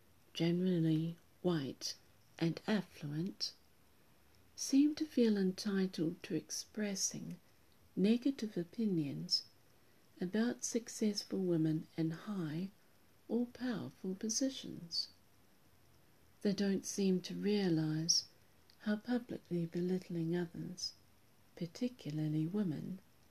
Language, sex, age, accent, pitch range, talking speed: English, female, 60-79, British, 155-210 Hz, 80 wpm